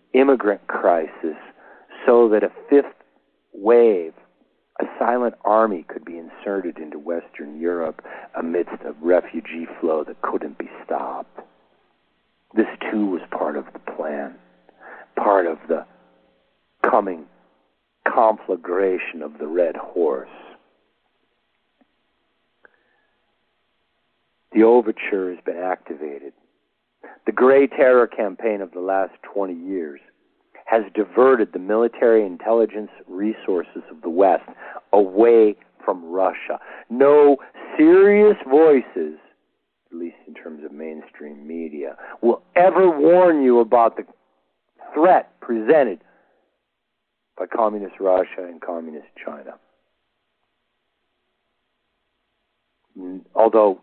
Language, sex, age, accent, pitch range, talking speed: English, male, 60-79, American, 80-120 Hz, 100 wpm